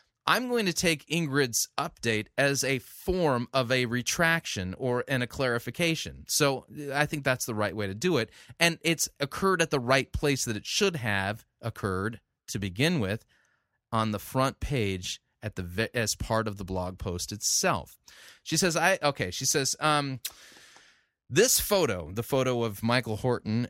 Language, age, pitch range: English, 30-49, 110-145 Hz